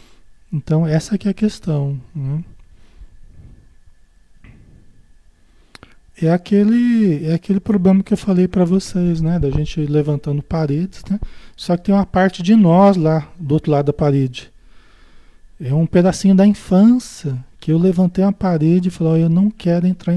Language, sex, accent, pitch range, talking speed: Portuguese, male, Brazilian, 150-200 Hz, 150 wpm